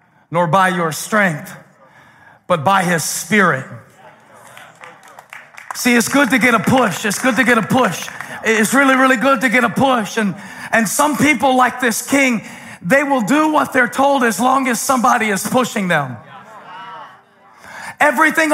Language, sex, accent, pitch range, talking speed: English, male, American, 235-305 Hz, 160 wpm